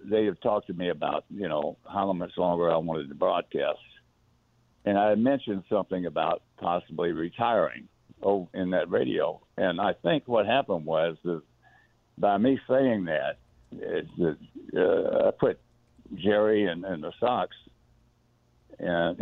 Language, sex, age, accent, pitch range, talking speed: English, male, 60-79, American, 85-110 Hz, 155 wpm